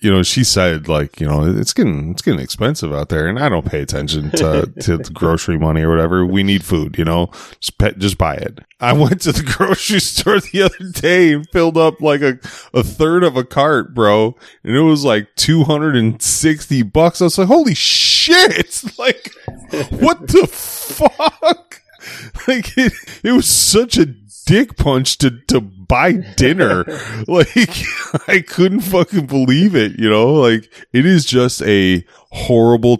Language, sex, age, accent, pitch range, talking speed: English, male, 20-39, American, 90-155 Hz, 175 wpm